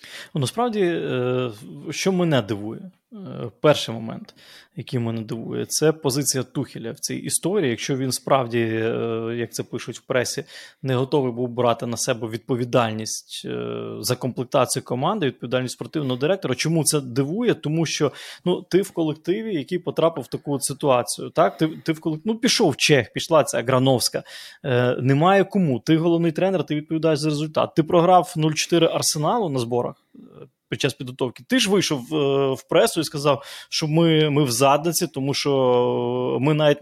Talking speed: 170 wpm